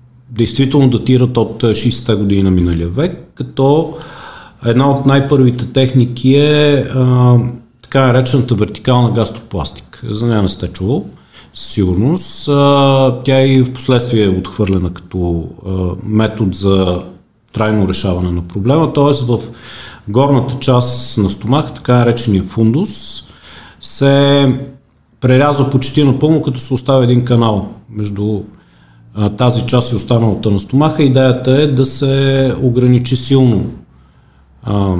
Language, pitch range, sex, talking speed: Bulgarian, 105-135 Hz, male, 125 wpm